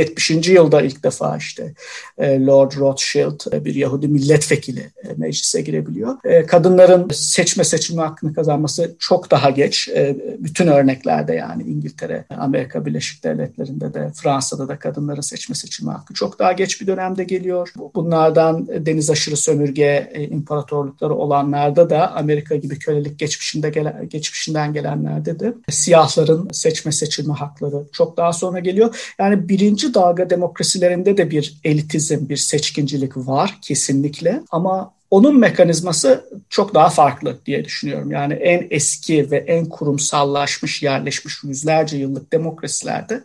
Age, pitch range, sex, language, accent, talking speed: 50-69, 145-180 Hz, male, Turkish, native, 125 wpm